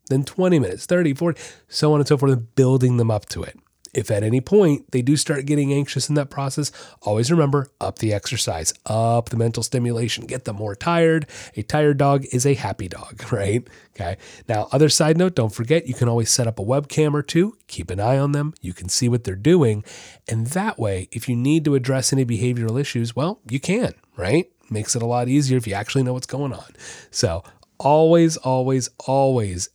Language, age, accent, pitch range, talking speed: English, 30-49, American, 105-140 Hz, 215 wpm